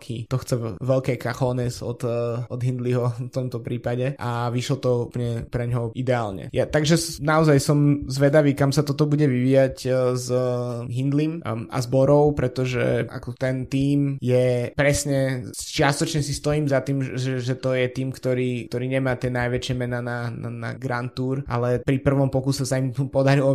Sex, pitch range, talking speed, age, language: male, 120-135 Hz, 175 wpm, 20-39, Slovak